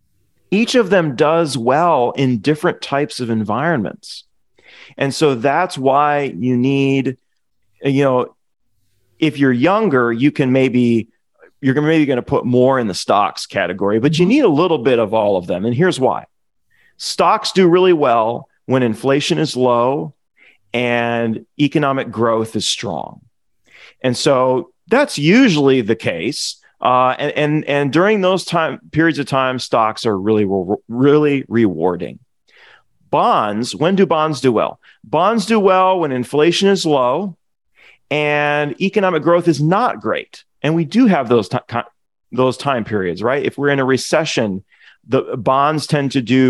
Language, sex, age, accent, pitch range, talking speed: English, male, 40-59, American, 120-155 Hz, 155 wpm